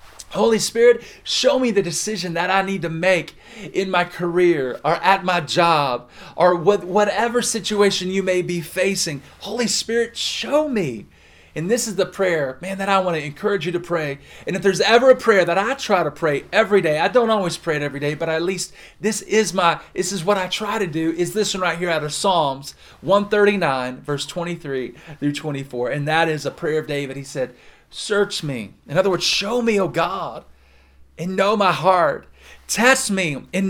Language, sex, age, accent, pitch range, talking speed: English, male, 40-59, American, 155-200 Hz, 205 wpm